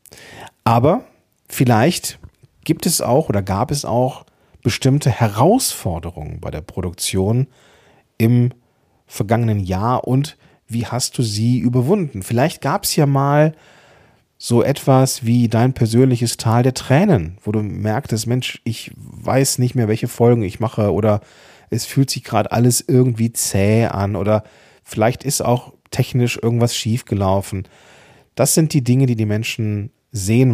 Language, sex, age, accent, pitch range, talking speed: German, male, 40-59, German, 100-130 Hz, 145 wpm